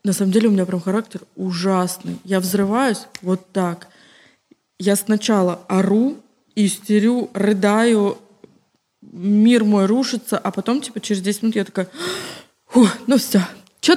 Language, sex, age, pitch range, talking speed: Russian, female, 20-39, 195-230 Hz, 135 wpm